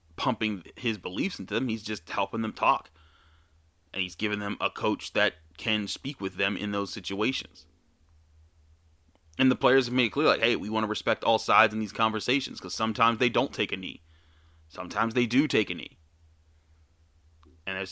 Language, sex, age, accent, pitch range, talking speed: English, male, 30-49, American, 80-105 Hz, 190 wpm